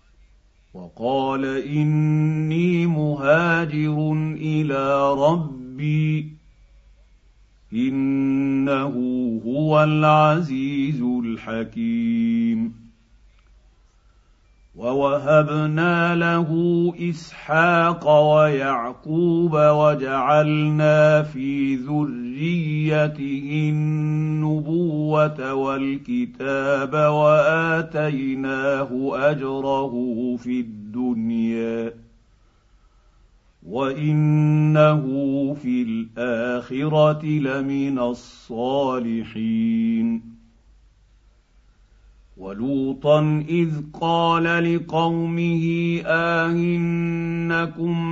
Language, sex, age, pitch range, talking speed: Arabic, male, 50-69, 135-165 Hz, 40 wpm